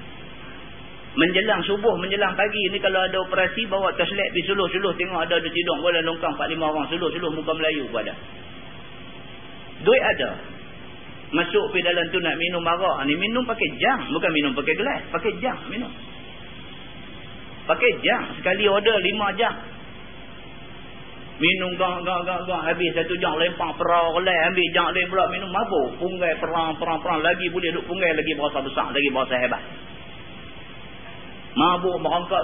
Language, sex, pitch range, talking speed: Malay, male, 155-190 Hz, 145 wpm